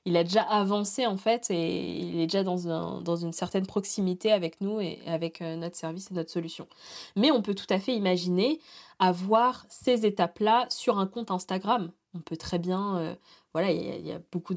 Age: 20-39